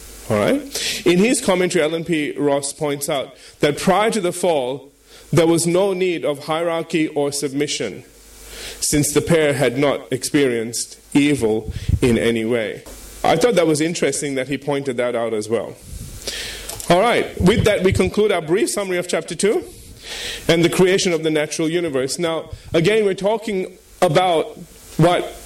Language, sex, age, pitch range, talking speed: English, male, 30-49, 145-210 Hz, 165 wpm